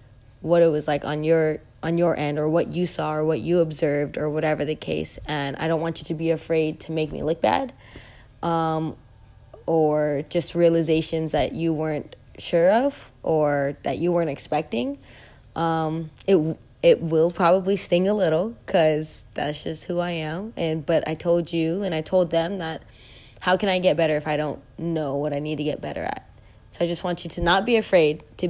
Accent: American